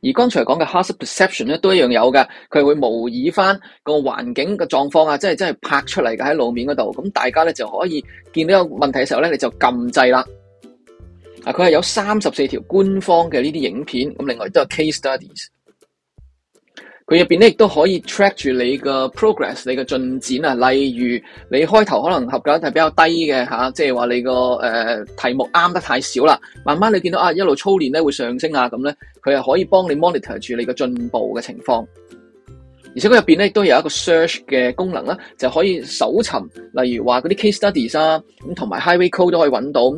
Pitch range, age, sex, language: 125-185 Hz, 20-39, male, Chinese